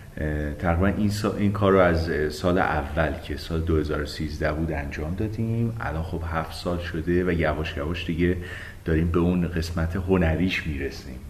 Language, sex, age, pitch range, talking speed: Persian, male, 30-49, 80-100 Hz, 155 wpm